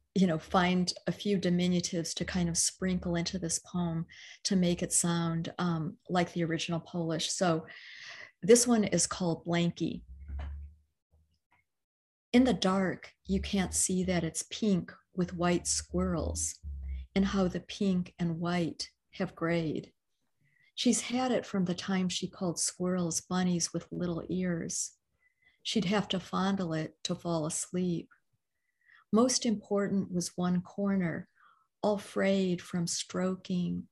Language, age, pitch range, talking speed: English, 50-69, 170-190 Hz, 140 wpm